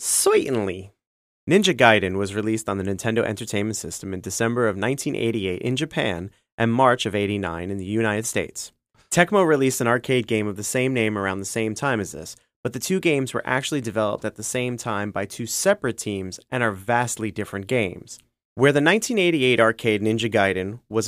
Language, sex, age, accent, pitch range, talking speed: English, male, 30-49, American, 105-135 Hz, 190 wpm